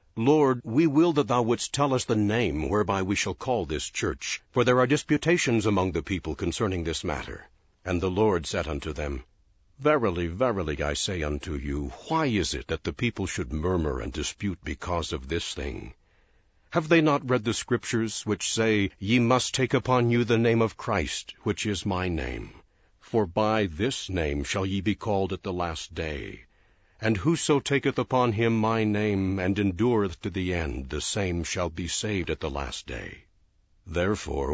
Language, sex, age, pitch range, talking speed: English, male, 60-79, 85-120 Hz, 185 wpm